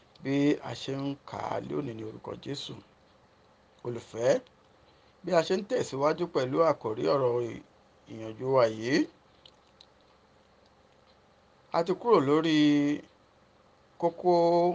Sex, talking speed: male, 80 wpm